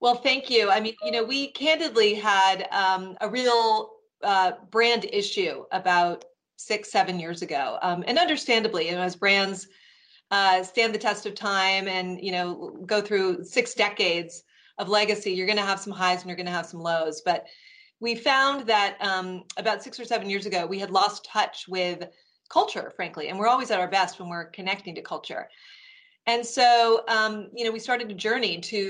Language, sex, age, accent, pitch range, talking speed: English, female, 30-49, American, 185-235 Hz, 195 wpm